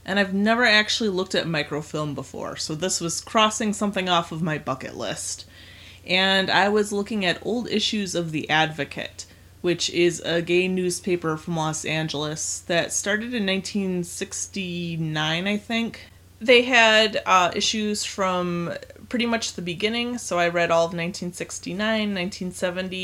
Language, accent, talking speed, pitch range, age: English, American, 150 wpm, 155-185 Hz, 30-49